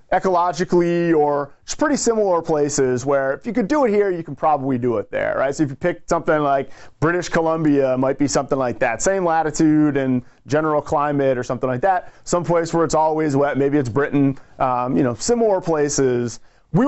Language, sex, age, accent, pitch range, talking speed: English, male, 30-49, American, 145-200 Hz, 205 wpm